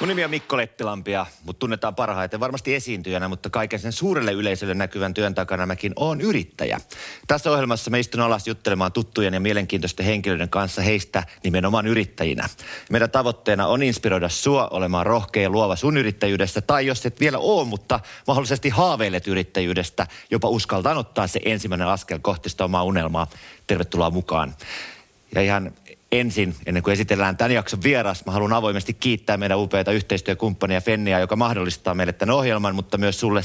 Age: 30-49